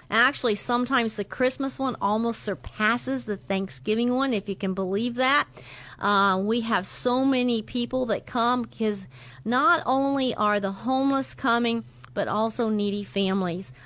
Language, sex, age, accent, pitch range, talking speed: English, female, 50-69, American, 195-240 Hz, 145 wpm